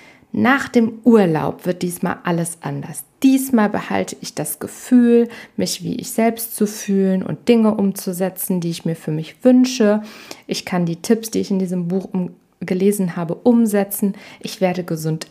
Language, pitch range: German, 175-215 Hz